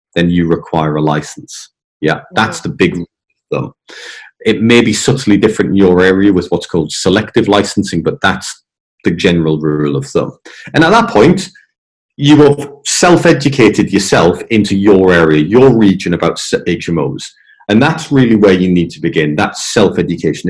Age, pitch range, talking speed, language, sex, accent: 40-59, 85-115 Hz, 165 wpm, English, male, British